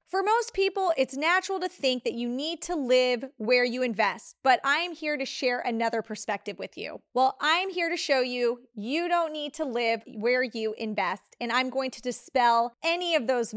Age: 30-49